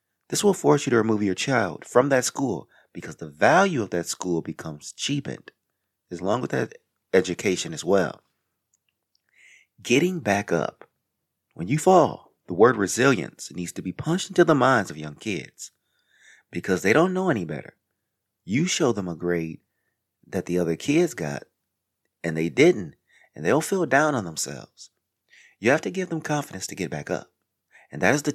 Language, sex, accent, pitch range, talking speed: English, male, American, 90-150 Hz, 180 wpm